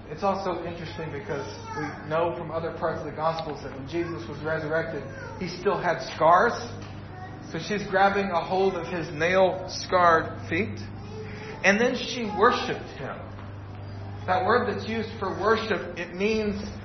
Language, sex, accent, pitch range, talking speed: English, male, American, 125-200 Hz, 155 wpm